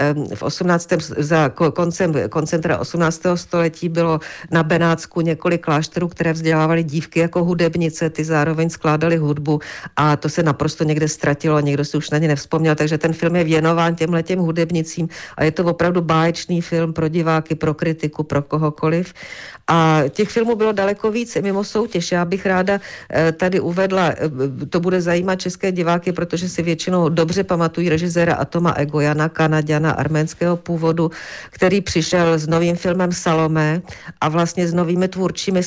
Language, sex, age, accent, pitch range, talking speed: Czech, female, 50-69, native, 150-170 Hz, 155 wpm